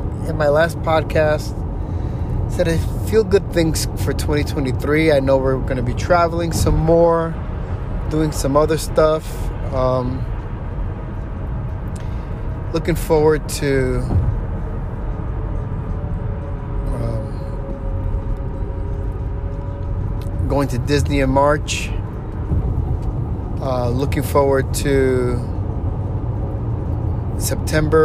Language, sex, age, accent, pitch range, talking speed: English, male, 30-49, American, 95-130 Hz, 85 wpm